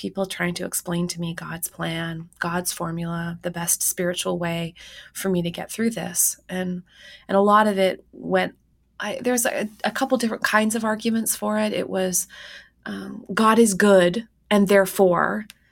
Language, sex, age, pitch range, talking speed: English, female, 20-39, 180-215 Hz, 175 wpm